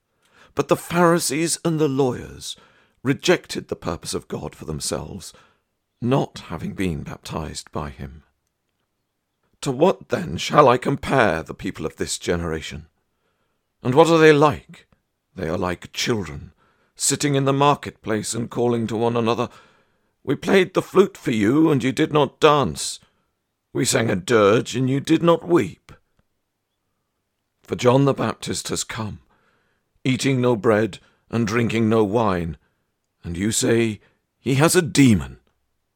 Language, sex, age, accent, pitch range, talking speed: English, male, 50-69, British, 95-135 Hz, 145 wpm